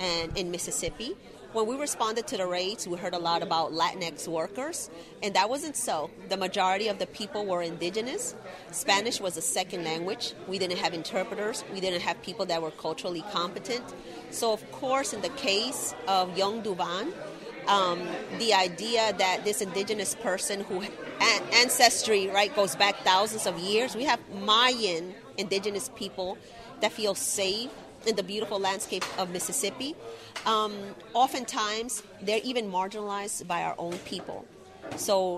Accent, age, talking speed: American, 30-49, 160 wpm